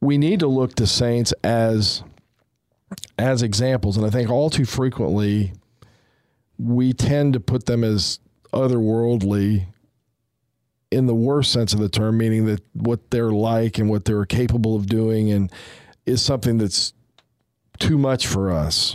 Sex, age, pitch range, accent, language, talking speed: male, 40-59, 105-120 Hz, American, English, 150 wpm